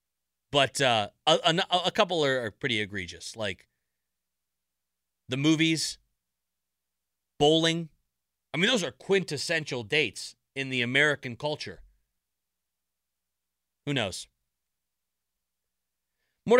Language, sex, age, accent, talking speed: English, male, 30-49, American, 100 wpm